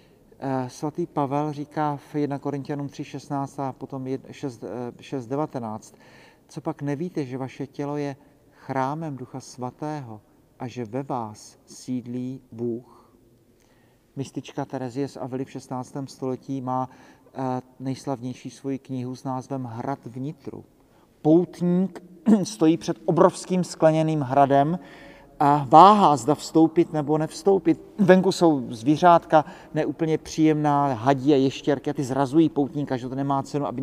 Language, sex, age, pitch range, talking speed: Czech, male, 40-59, 135-160 Hz, 125 wpm